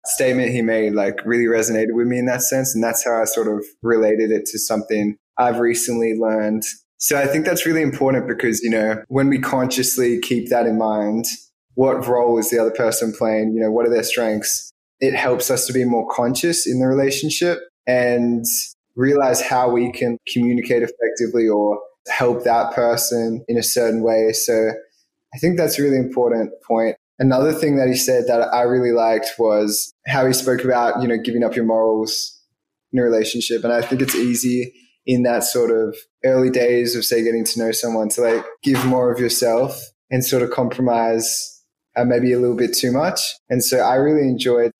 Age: 20-39